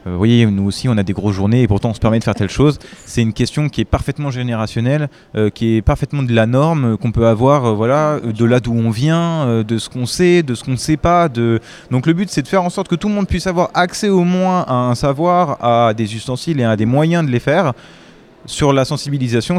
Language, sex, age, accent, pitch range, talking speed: French, male, 20-39, French, 115-170 Hz, 255 wpm